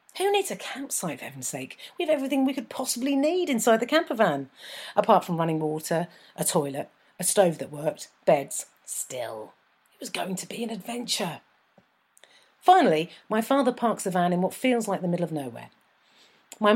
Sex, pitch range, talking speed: female, 160-225 Hz, 185 wpm